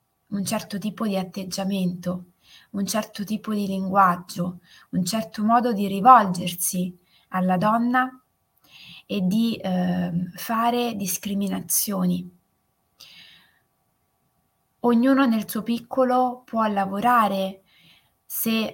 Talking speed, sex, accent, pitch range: 95 wpm, female, native, 190-230 Hz